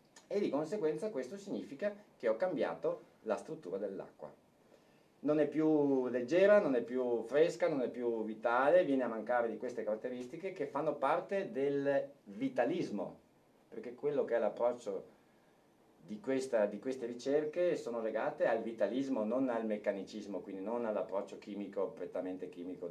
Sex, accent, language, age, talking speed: male, native, Italian, 50-69, 150 wpm